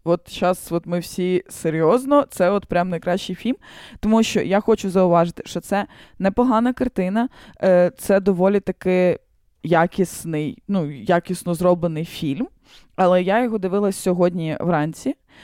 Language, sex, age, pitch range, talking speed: Ukrainian, female, 20-39, 180-220 Hz, 130 wpm